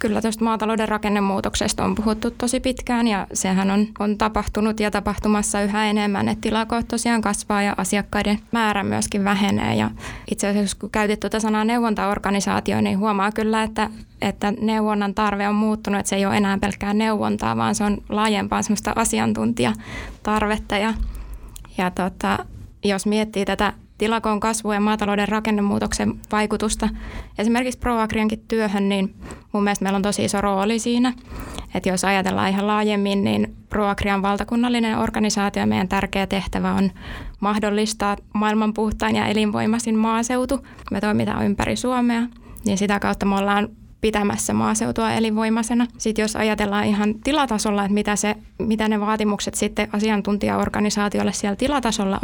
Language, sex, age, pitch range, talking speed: Finnish, female, 20-39, 200-220 Hz, 140 wpm